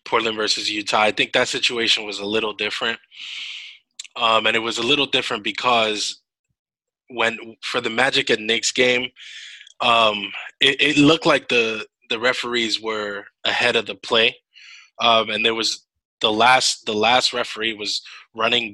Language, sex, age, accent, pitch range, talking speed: English, male, 20-39, American, 105-120 Hz, 160 wpm